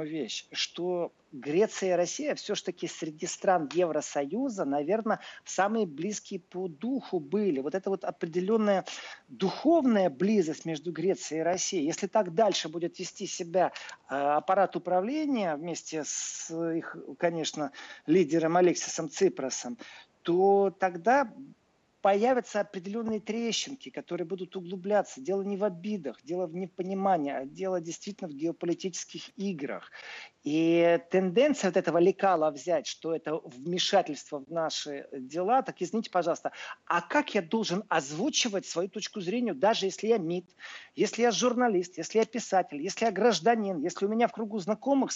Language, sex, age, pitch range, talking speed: Russian, male, 40-59, 170-215 Hz, 135 wpm